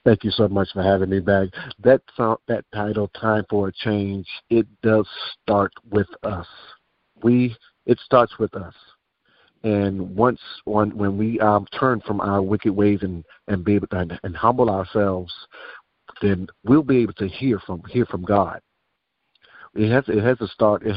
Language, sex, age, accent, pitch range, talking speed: English, male, 50-69, American, 95-110 Hz, 175 wpm